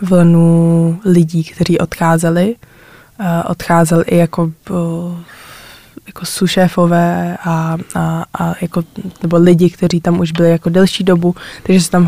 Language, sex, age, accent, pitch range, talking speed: Czech, female, 20-39, native, 165-180 Hz, 125 wpm